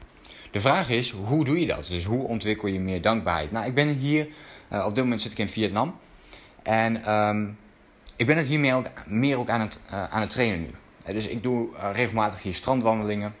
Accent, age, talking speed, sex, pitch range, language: Dutch, 20-39, 225 wpm, male, 95-120 Hz, Dutch